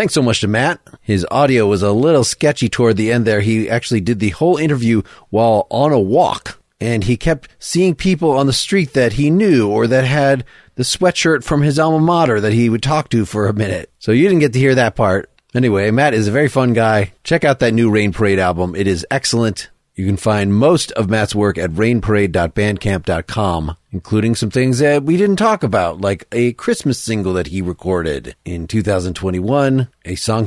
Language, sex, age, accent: English, male, 30-49, American